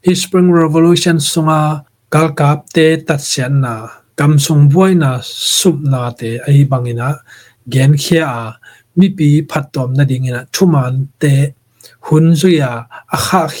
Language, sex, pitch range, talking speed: English, male, 125-160 Hz, 85 wpm